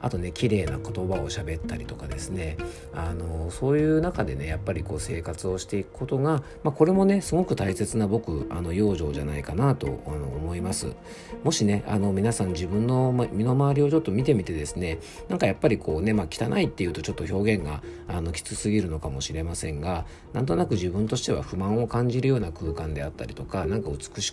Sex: male